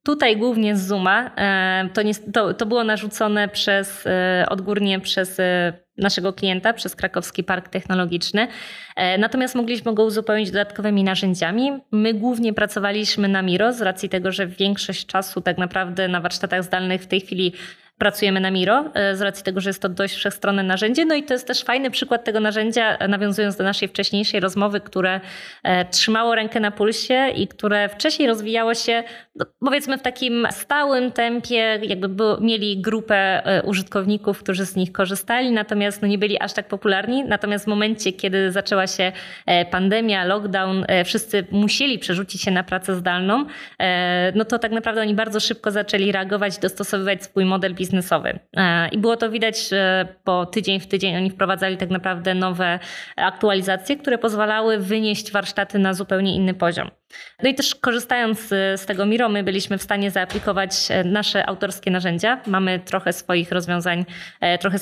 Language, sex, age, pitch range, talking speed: Polish, female, 20-39, 190-220 Hz, 155 wpm